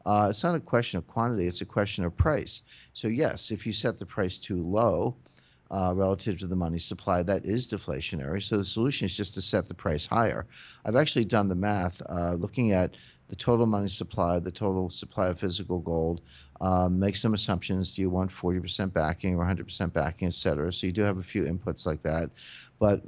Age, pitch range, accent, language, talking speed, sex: 50-69, 90-105 Hz, American, English, 210 wpm, male